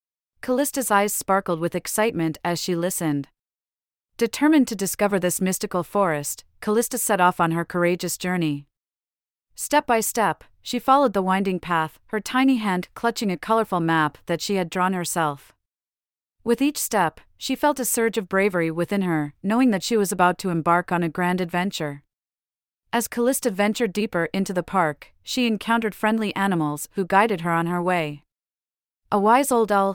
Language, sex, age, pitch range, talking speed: English, female, 40-59, 160-215 Hz, 170 wpm